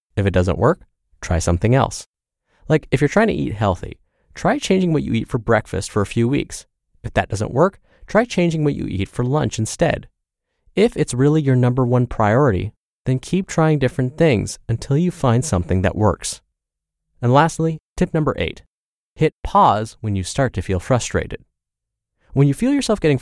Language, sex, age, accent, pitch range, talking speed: English, male, 20-39, American, 100-145 Hz, 190 wpm